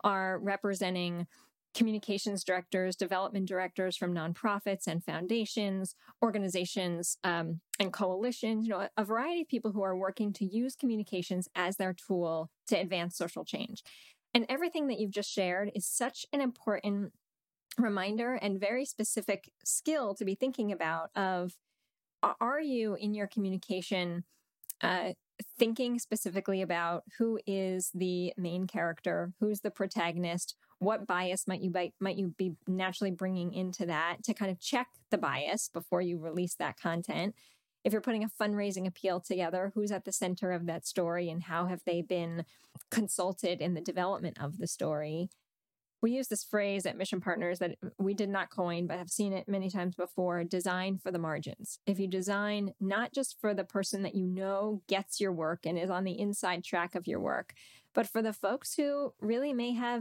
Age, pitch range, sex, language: 20-39, 180-210 Hz, female, English